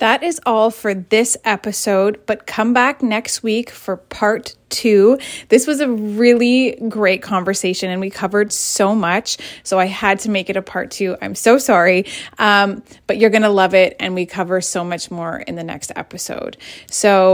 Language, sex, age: English, female, 20-39